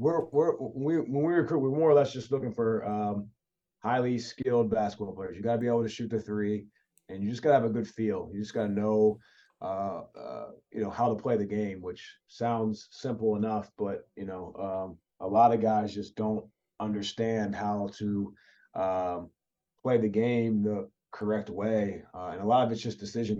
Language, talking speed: English, 210 wpm